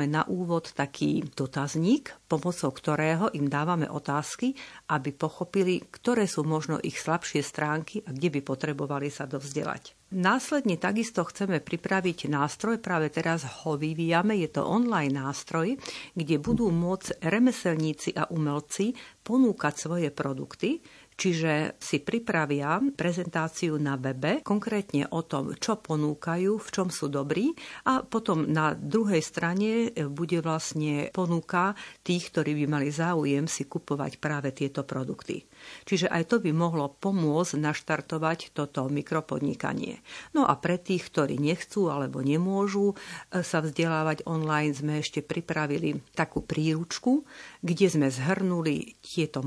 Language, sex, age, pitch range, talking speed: Slovak, female, 50-69, 150-185 Hz, 130 wpm